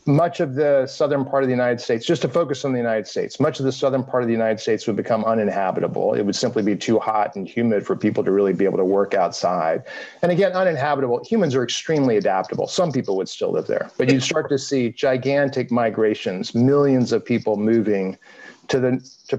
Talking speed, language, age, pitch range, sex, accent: 225 wpm, English, 40-59, 110-135 Hz, male, American